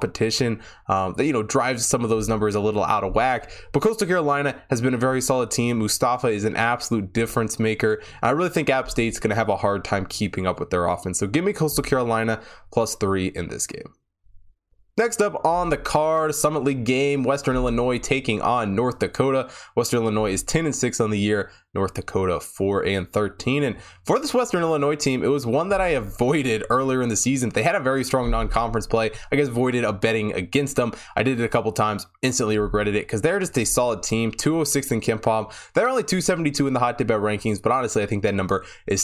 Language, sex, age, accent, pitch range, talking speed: English, male, 20-39, American, 105-140 Hz, 225 wpm